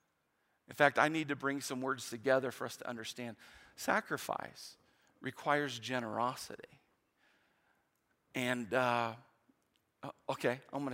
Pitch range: 130-180 Hz